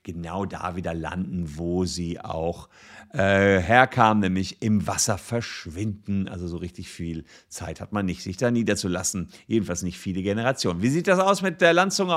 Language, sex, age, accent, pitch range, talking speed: German, male, 50-69, German, 110-155 Hz, 175 wpm